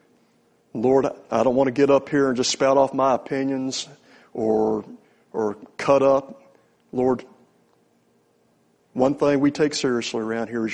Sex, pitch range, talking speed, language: male, 125-155 Hz, 150 wpm, English